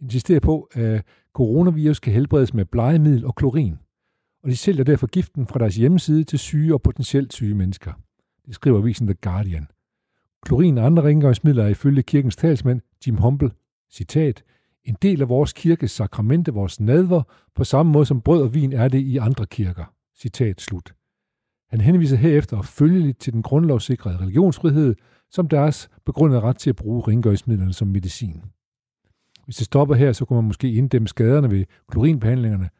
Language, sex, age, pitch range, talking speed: Danish, male, 60-79, 110-150 Hz, 170 wpm